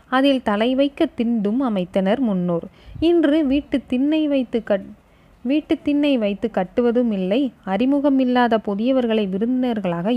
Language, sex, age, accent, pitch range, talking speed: Tamil, female, 20-39, native, 205-265 Hz, 110 wpm